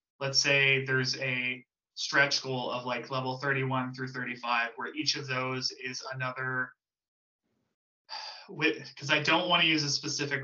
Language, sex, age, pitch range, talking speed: English, male, 20-39, 125-145 Hz, 155 wpm